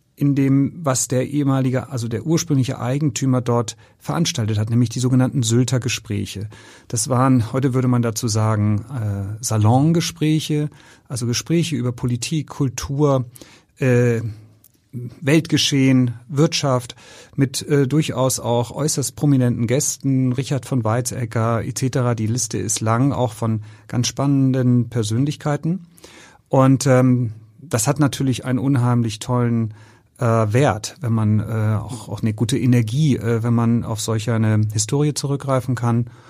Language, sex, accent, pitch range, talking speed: German, male, German, 115-140 Hz, 130 wpm